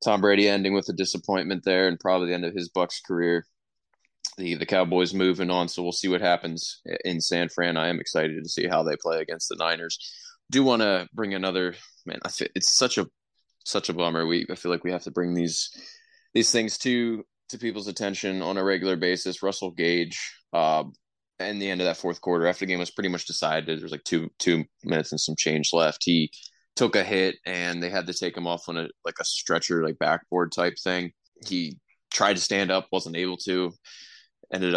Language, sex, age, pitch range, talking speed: English, male, 20-39, 85-95 Hz, 215 wpm